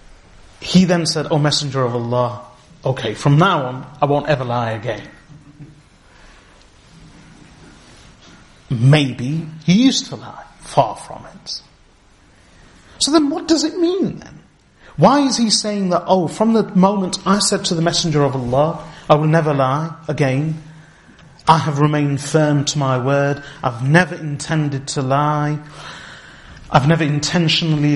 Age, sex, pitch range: 30-49, male, 140-180 Hz